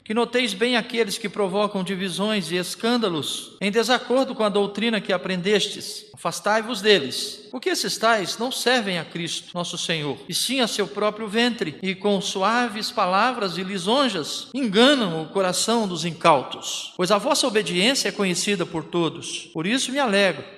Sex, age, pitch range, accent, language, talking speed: male, 50-69, 170-230 Hz, Brazilian, Portuguese, 165 wpm